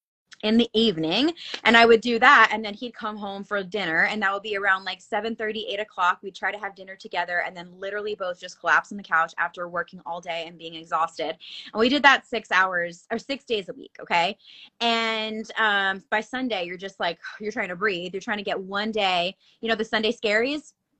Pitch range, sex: 195-235 Hz, female